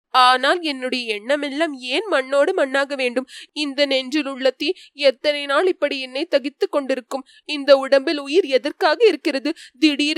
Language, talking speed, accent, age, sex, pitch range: Tamil, 100 wpm, native, 20-39, female, 270-355 Hz